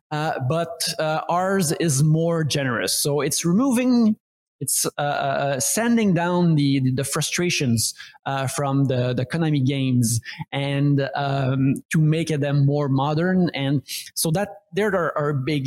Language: English